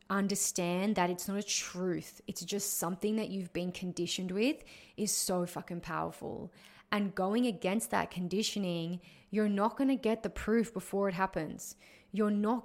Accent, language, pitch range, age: Australian, English, 180-210 Hz, 20-39